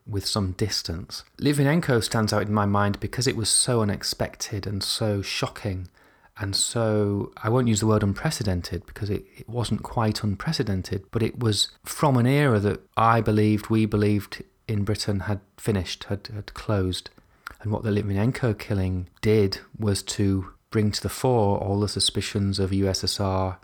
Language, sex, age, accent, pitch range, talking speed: English, male, 30-49, British, 100-130 Hz, 170 wpm